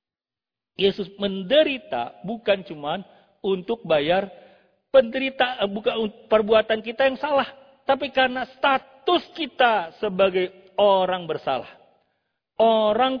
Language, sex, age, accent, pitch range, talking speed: Indonesian, male, 50-69, native, 175-250 Hz, 90 wpm